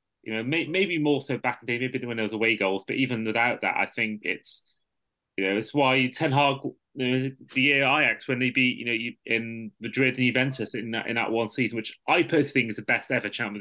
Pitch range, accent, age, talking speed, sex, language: 115-135 Hz, British, 20-39, 250 wpm, male, English